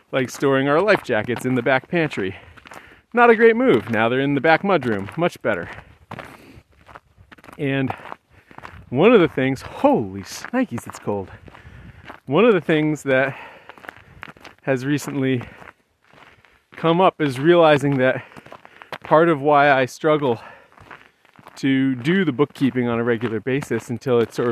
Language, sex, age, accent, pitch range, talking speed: English, male, 40-59, American, 115-150 Hz, 140 wpm